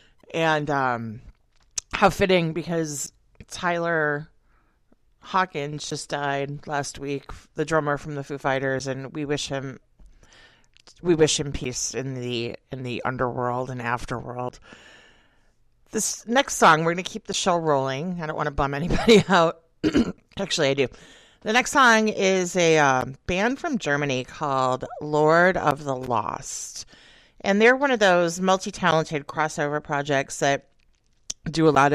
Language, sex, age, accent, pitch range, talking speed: English, female, 40-59, American, 140-185 Hz, 145 wpm